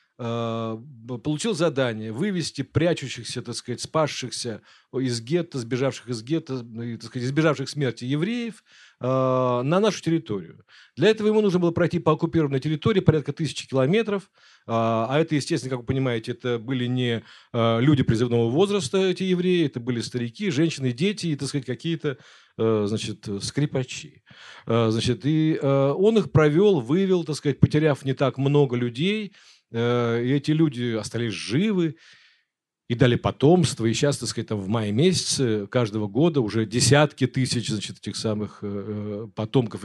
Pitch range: 115-155 Hz